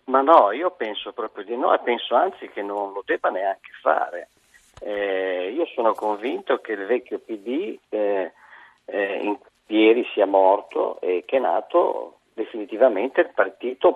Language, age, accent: Italian, 50-69, native